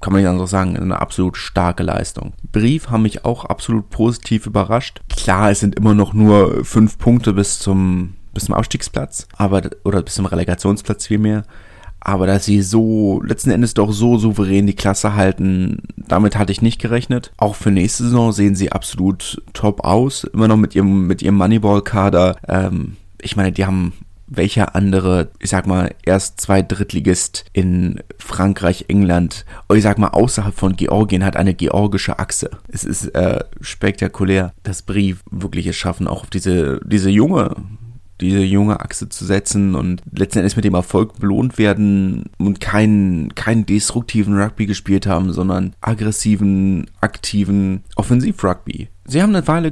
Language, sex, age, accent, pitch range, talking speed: German, male, 30-49, German, 95-110 Hz, 165 wpm